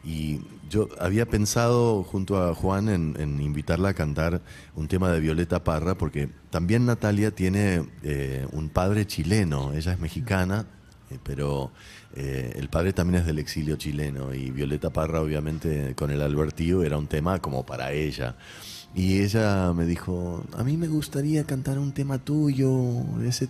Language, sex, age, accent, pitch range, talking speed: Spanish, male, 30-49, Argentinian, 75-95 Hz, 165 wpm